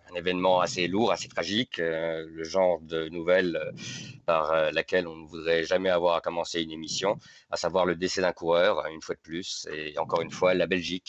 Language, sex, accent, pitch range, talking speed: French, male, French, 85-105 Hz, 195 wpm